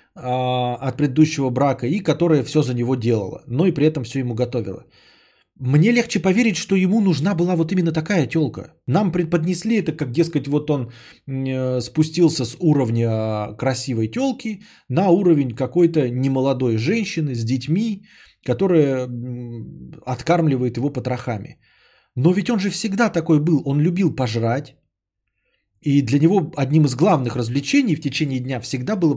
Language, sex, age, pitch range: Bulgarian, male, 20-39, 125-170 Hz